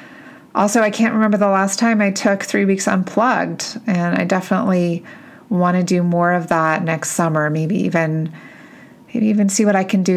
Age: 30-49